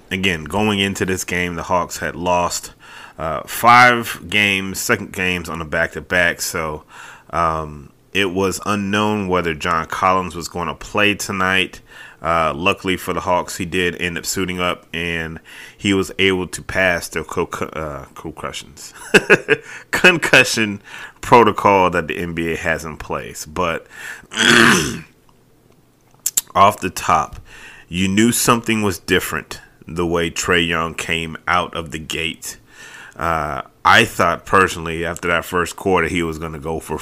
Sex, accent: male, American